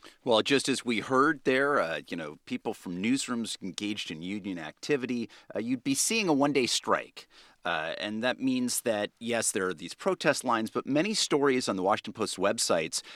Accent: American